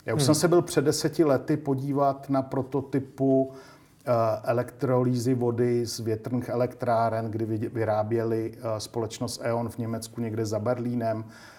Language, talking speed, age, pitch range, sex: Czech, 130 wpm, 50-69, 115-135 Hz, male